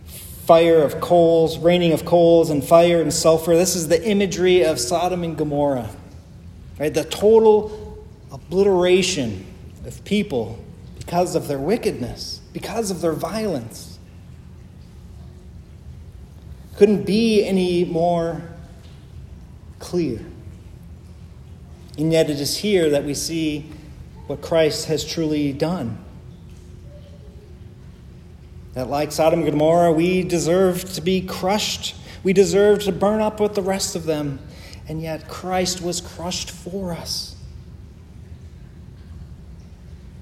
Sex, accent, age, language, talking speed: male, American, 40-59, English, 115 wpm